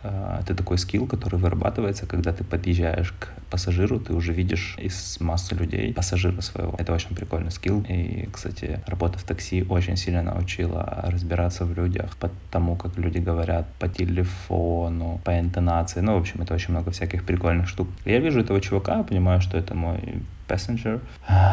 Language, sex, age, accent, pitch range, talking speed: Russian, male, 20-39, native, 90-100 Hz, 165 wpm